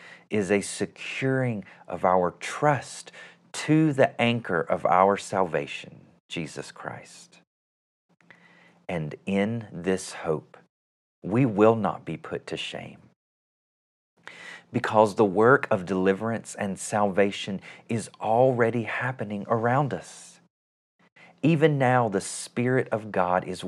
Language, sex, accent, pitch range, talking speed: English, male, American, 90-120 Hz, 110 wpm